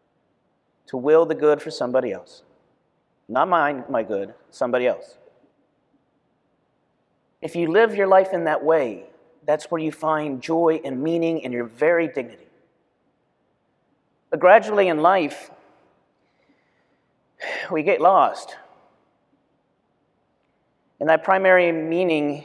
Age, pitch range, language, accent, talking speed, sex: 40-59, 140-165 Hz, English, American, 115 wpm, male